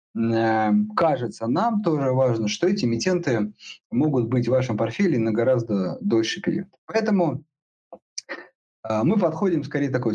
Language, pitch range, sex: Russian, 120-175 Hz, male